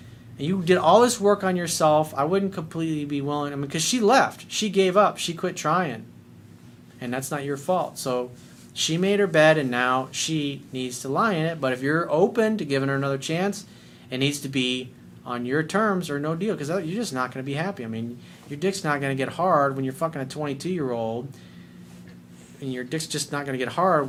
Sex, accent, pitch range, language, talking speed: male, American, 125-170 Hz, English, 225 wpm